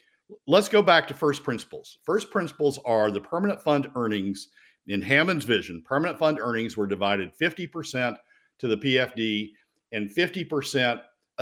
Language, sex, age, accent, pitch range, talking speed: English, male, 50-69, American, 105-150 Hz, 140 wpm